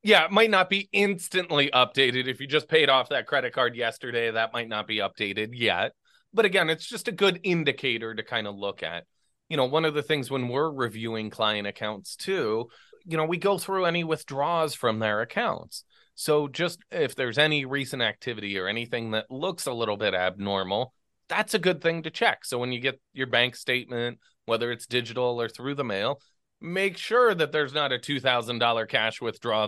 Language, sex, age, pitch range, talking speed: English, male, 30-49, 115-165 Hz, 200 wpm